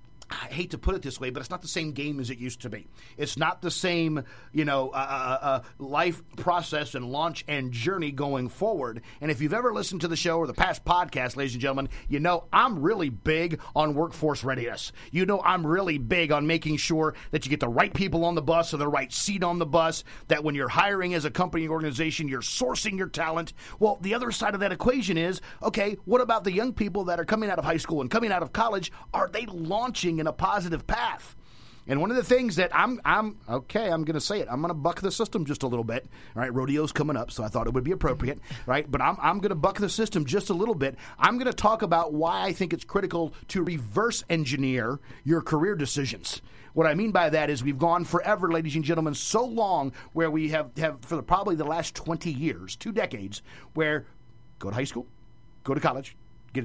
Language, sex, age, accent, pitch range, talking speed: English, male, 40-59, American, 135-180 Hz, 240 wpm